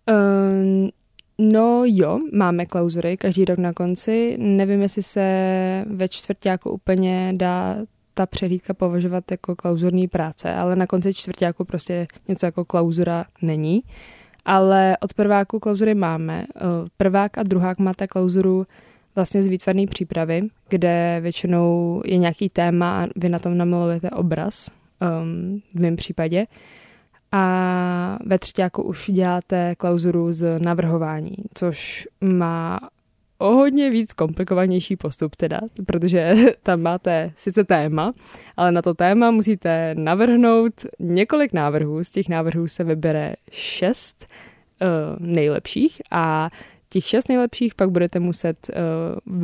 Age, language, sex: 20-39, Czech, female